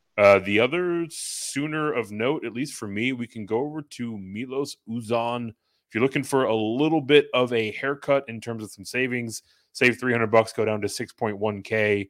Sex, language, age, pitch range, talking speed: male, English, 30-49, 105-130 Hz, 200 wpm